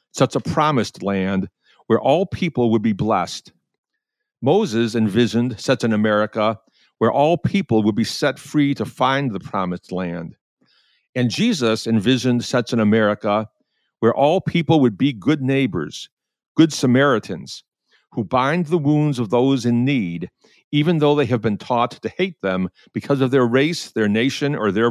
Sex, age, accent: male, 50-69, American